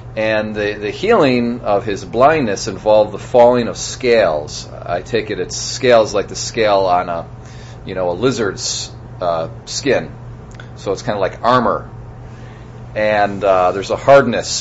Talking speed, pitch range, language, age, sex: 160 wpm, 100-125 Hz, English, 40-59, male